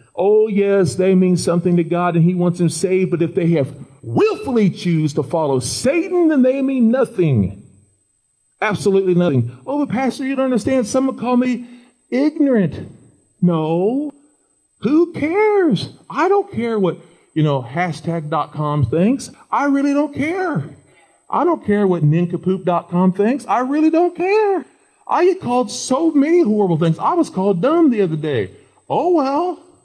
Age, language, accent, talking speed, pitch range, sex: 40-59, English, American, 155 wpm, 180-290 Hz, male